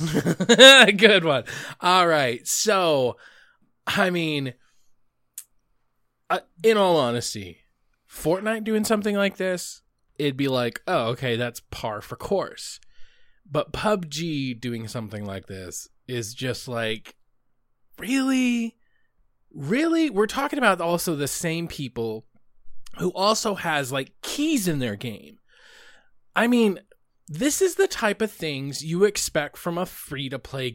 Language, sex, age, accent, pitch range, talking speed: English, male, 20-39, American, 140-220 Hz, 125 wpm